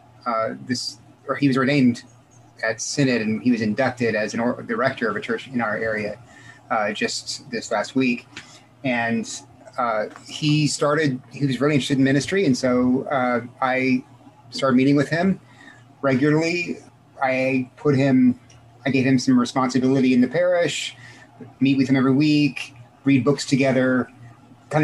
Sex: male